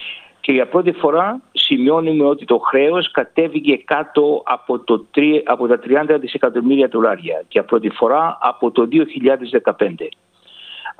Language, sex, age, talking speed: Greek, male, 60-79, 135 wpm